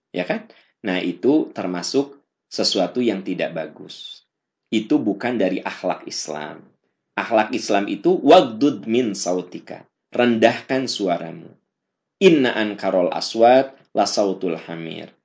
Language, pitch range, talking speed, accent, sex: Indonesian, 90-125 Hz, 110 wpm, native, male